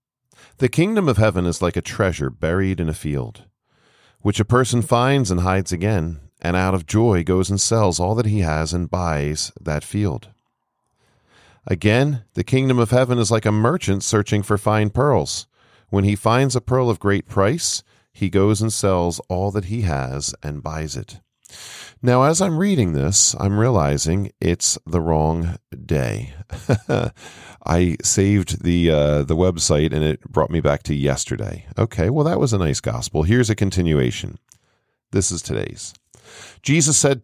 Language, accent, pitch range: English, American, 85-120 Hz